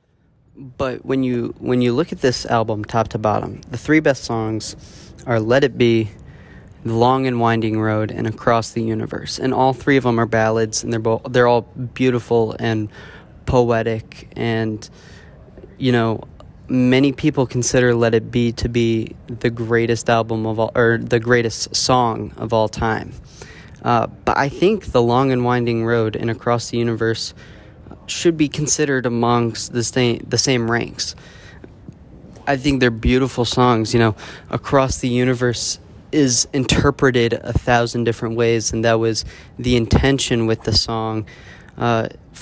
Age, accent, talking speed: 20-39, American, 155 wpm